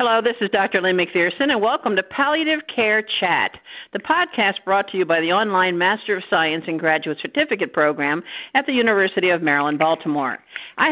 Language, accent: English, American